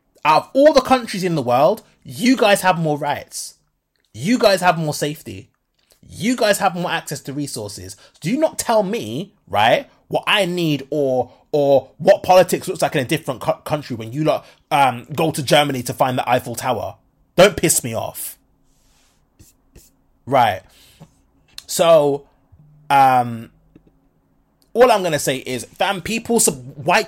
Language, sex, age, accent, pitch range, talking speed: English, male, 20-39, British, 140-190 Hz, 160 wpm